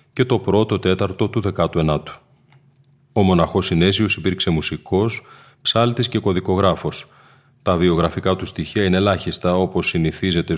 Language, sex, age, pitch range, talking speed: Greek, male, 30-49, 85-105 Hz, 125 wpm